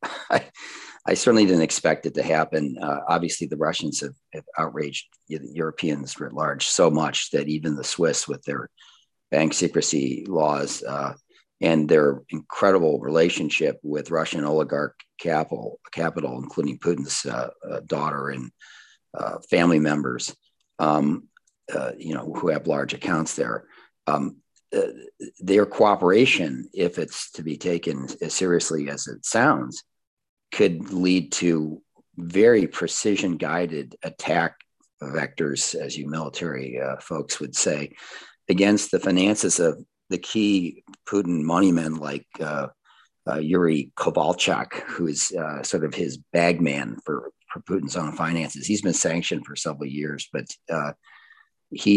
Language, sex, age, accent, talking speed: English, male, 40-59, American, 140 wpm